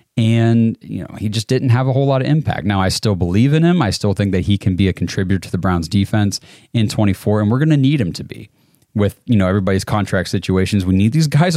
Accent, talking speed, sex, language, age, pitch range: American, 265 wpm, male, English, 30-49, 95-115 Hz